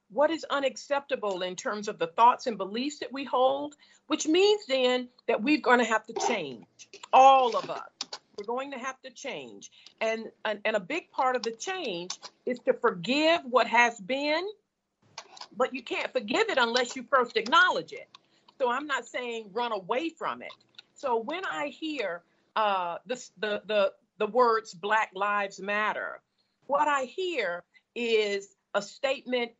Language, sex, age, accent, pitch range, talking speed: English, female, 50-69, American, 220-295 Hz, 170 wpm